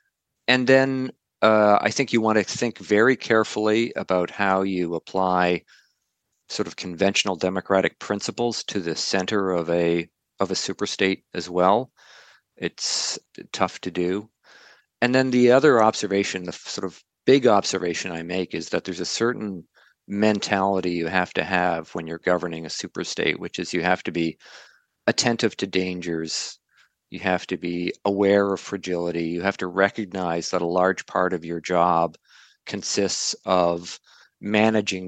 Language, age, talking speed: English, 40-59, 160 wpm